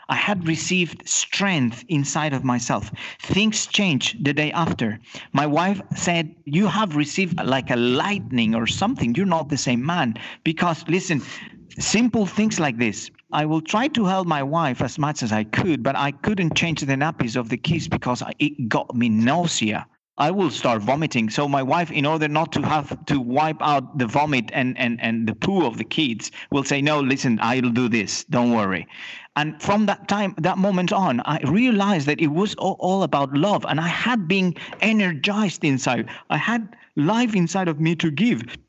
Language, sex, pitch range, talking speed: English, male, 135-195 Hz, 190 wpm